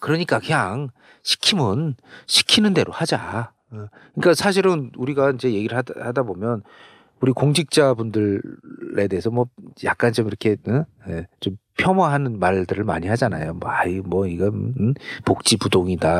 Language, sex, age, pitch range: Korean, male, 40-59, 90-130 Hz